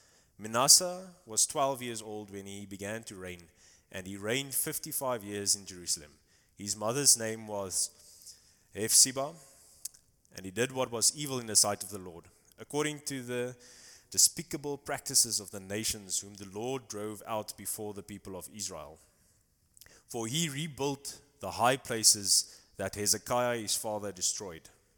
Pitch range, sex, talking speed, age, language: 95-120 Hz, male, 150 wpm, 20-39, English